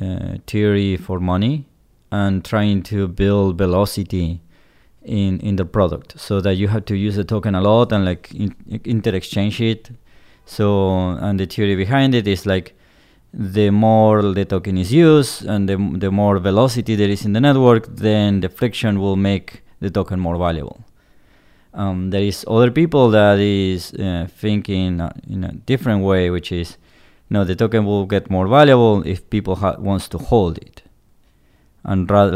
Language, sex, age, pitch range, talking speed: English, male, 20-39, 95-105 Hz, 170 wpm